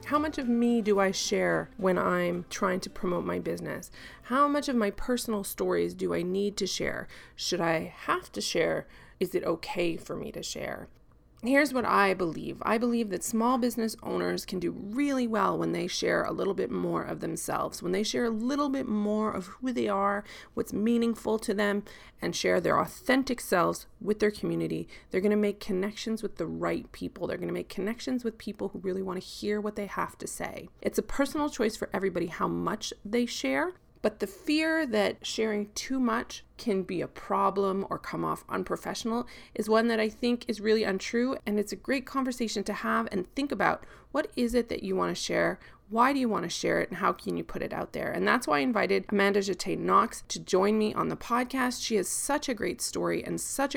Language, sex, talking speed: English, female, 215 wpm